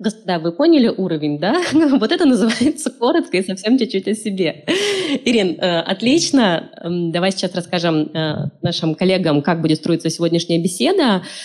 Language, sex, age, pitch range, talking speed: Russian, female, 20-39, 175-250 Hz, 135 wpm